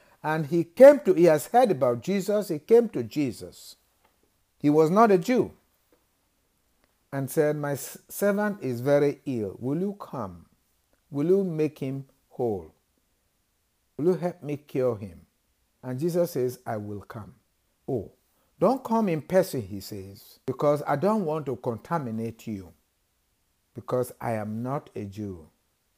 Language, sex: English, male